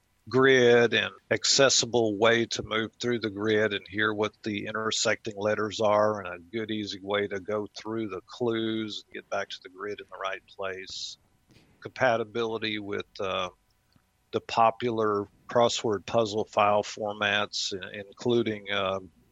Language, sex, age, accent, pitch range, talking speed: English, male, 50-69, American, 100-115 Hz, 145 wpm